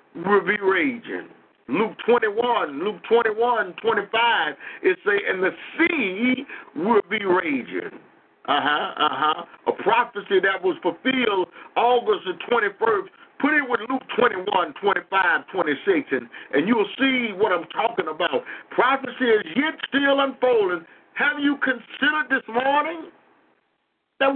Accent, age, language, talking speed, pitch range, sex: American, 50-69, English, 140 wpm, 205-305 Hz, male